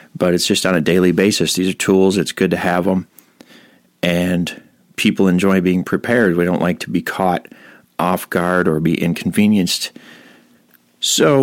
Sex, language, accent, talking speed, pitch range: male, English, American, 170 wpm, 85-95 Hz